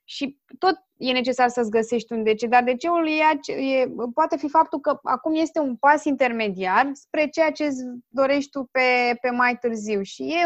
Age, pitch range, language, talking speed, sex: 20-39, 220-275 Hz, Romanian, 190 wpm, female